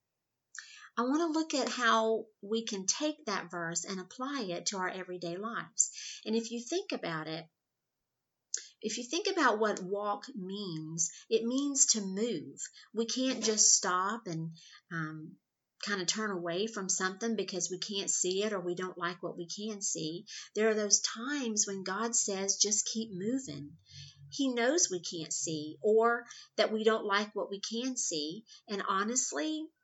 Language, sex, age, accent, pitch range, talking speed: English, female, 50-69, American, 175-230 Hz, 175 wpm